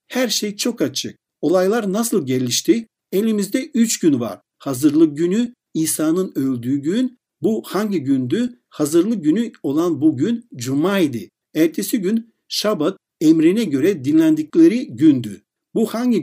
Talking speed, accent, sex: 120 wpm, native, male